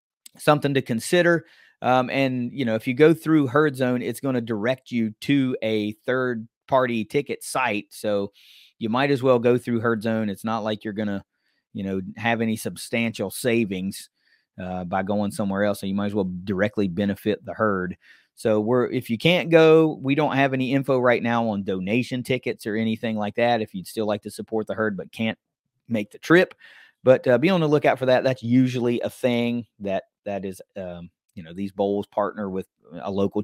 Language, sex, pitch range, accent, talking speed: English, male, 105-140 Hz, American, 210 wpm